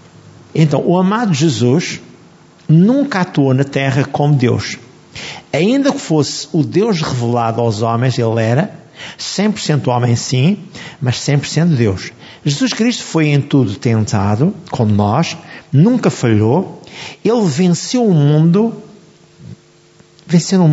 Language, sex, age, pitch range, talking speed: Portuguese, male, 50-69, 125-170 Hz, 120 wpm